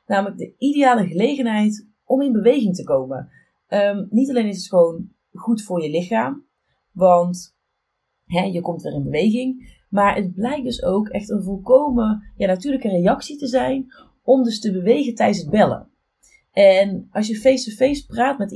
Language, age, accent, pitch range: Dutch, 30-49, Dutch, 190-240 Hz